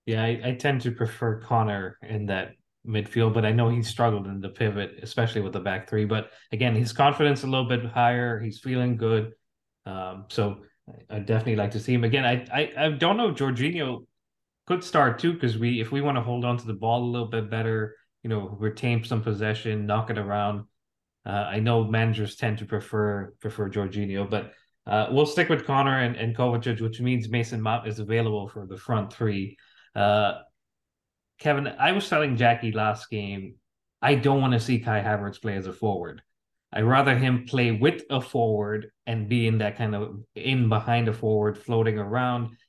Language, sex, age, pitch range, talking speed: English, male, 20-39, 105-130 Hz, 200 wpm